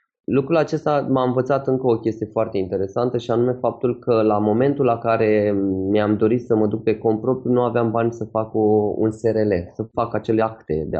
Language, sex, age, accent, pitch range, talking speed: Romanian, male, 20-39, native, 100-125 Hz, 200 wpm